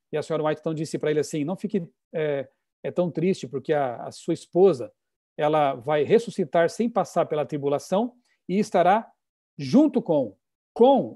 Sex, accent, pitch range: male, Brazilian, 145-195 Hz